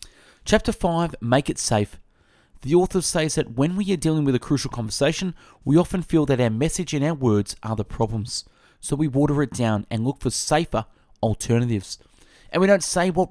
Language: English